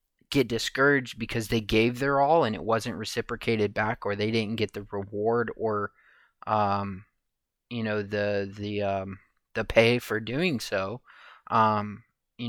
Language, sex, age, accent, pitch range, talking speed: English, male, 20-39, American, 105-120 Hz, 155 wpm